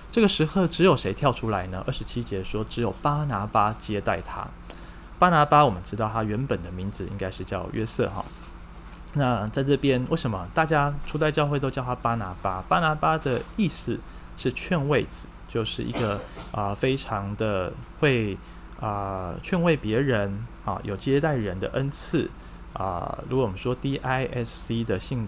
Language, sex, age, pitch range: Chinese, male, 20-39, 100-140 Hz